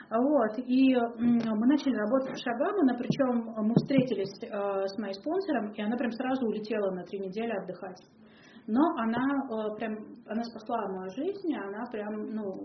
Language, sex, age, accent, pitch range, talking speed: Russian, female, 30-49, native, 200-255 Hz, 150 wpm